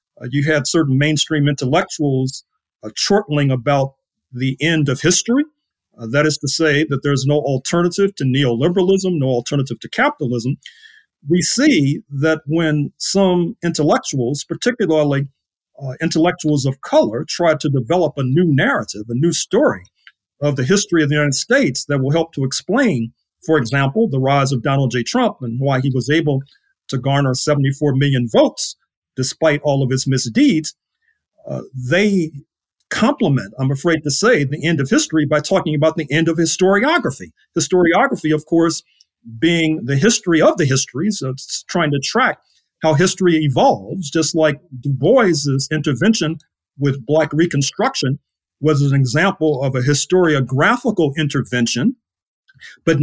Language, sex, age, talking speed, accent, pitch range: English, male, 40-59, 150 wpm, American, 140-175 Hz